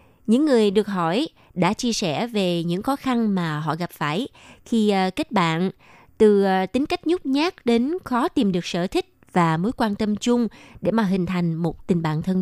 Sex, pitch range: female, 185-245 Hz